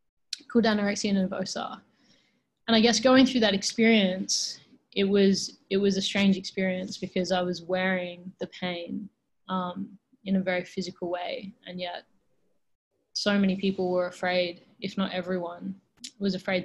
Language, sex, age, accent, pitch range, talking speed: English, female, 20-39, Australian, 175-200 Hz, 150 wpm